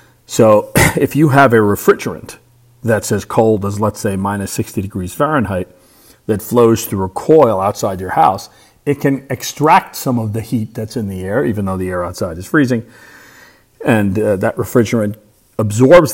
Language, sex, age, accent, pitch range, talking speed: English, male, 40-59, American, 100-115 Hz, 175 wpm